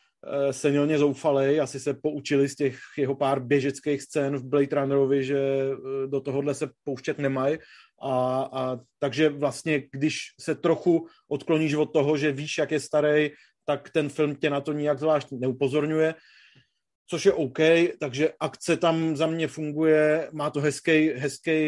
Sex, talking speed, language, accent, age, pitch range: male, 160 wpm, Czech, native, 30-49, 140-150 Hz